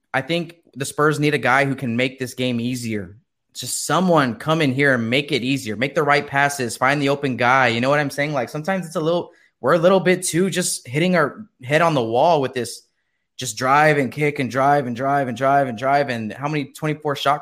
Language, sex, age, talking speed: English, male, 20-39, 245 wpm